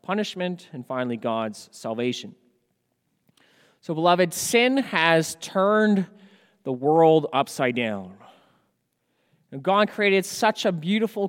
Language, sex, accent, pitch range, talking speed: English, male, American, 160-210 Hz, 100 wpm